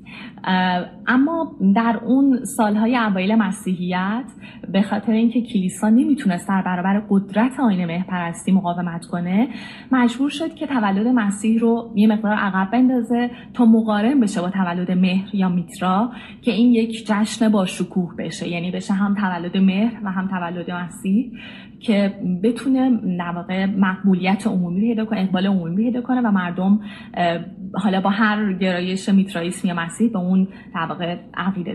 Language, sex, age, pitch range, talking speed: Persian, female, 30-49, 185-225 Hz, 145 wpm